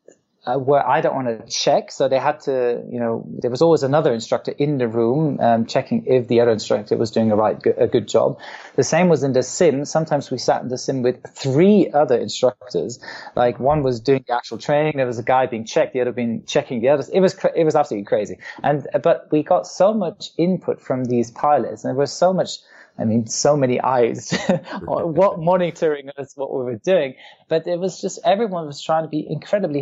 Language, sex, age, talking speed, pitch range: English, male, 20-39, 230 wpm, 125-160 Hz